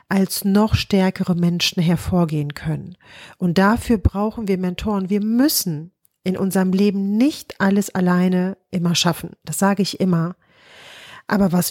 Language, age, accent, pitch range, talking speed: German, 40-59, German, 175-210 Hz, 140 wpm